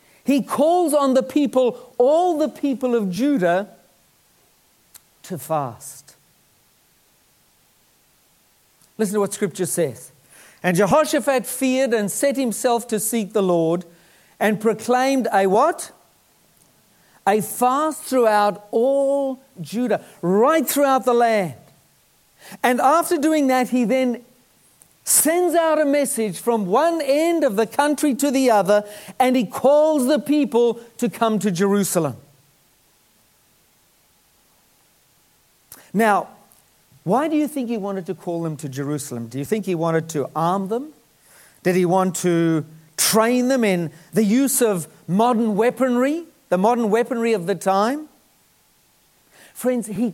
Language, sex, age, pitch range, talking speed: English, male, 50-69, 190-265 Hz, 130 wpm